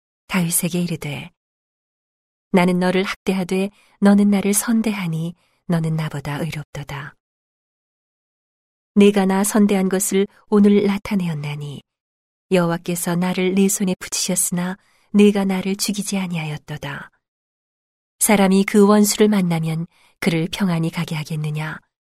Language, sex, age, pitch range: Korean, female, 40-59, 165-200 Hz